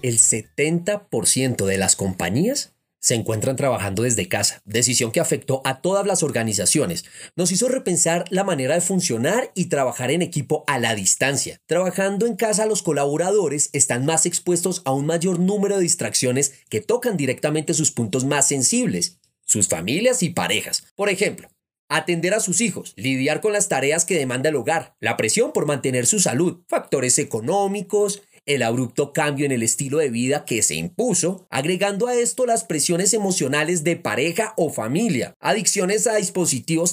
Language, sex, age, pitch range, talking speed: Spanish, male, 30-49, 125-185 Hz, 165 wpm